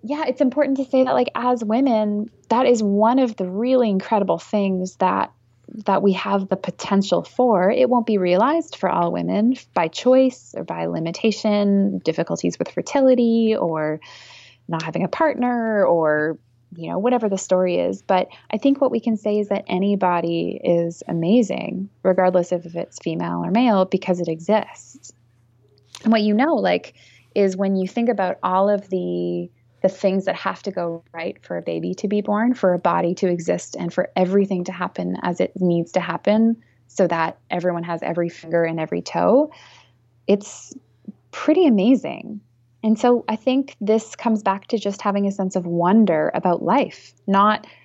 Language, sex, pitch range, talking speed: English, female, 165-220 Hz, 180 wpm